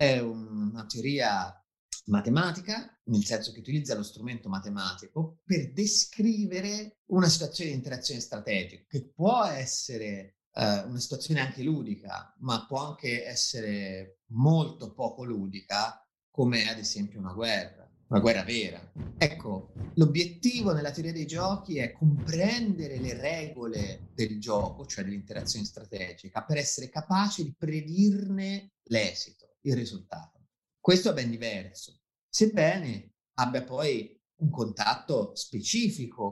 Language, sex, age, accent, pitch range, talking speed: Italian, male, 30-49, native, 110-160 Hz, 120 wpm